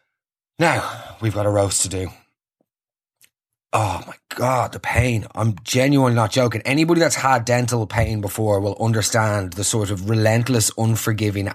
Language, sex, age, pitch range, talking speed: English, male, 20-39, 110-135 Hz, 150 wpm